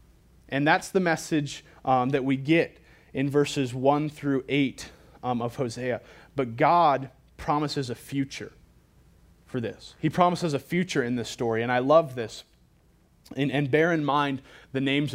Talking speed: 160 wpm